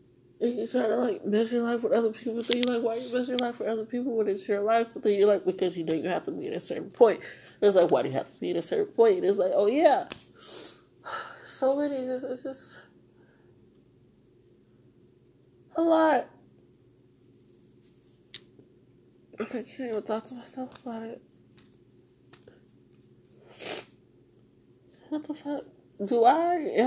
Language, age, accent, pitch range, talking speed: English, 20-39, American, 215-285 Hz, 165 wpm